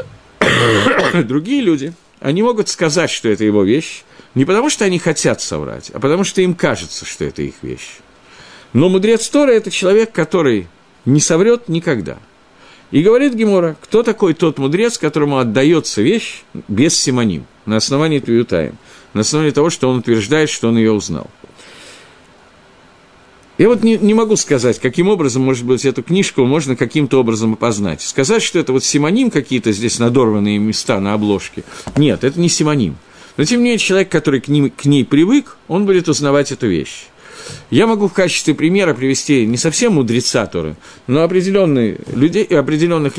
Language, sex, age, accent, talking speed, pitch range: Russian, male, 50-69, native, 160 wpm, 120-185 Hz